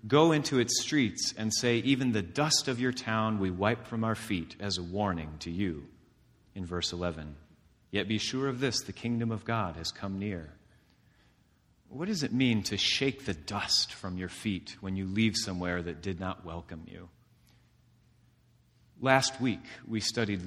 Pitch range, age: 100-125 Hz, 30-49